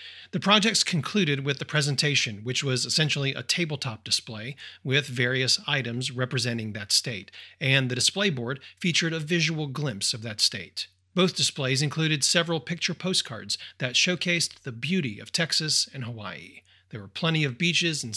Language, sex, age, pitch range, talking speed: English, male, 40-59, 120-155 Hz, 160 wpm